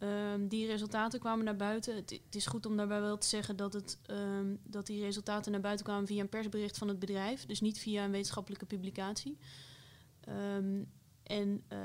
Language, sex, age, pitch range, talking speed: Dutch, female, 20-39, 190-210 Hz, 165 wpm